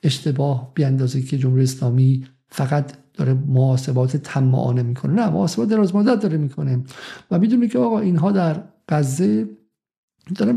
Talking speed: 135 wpm